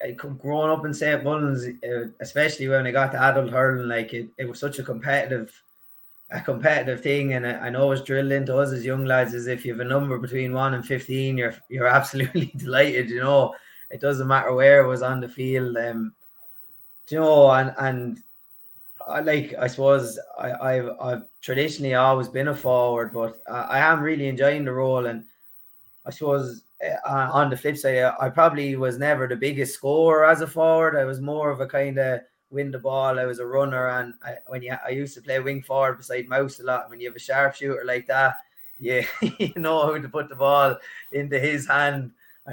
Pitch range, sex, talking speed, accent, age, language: 130-140 Hz, male, 215 wpm, Irish, 20-39, English